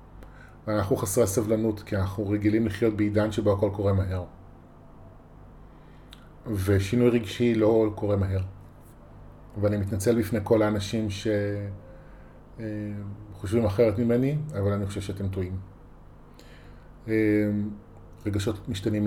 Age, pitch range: 30-49, 100-120 Hz